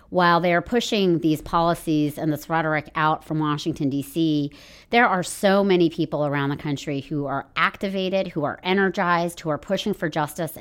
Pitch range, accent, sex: 150-175 Hz, American, female